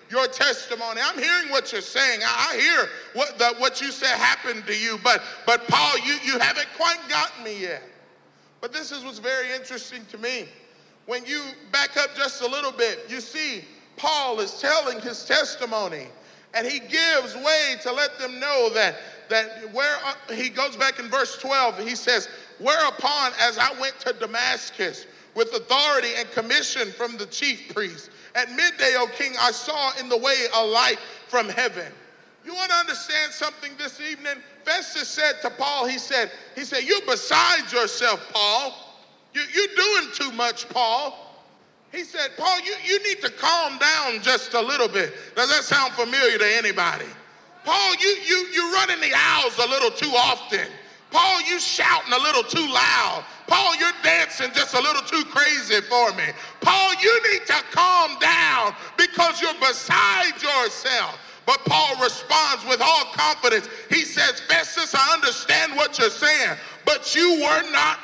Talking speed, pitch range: 175 wpm, 245-345 Hz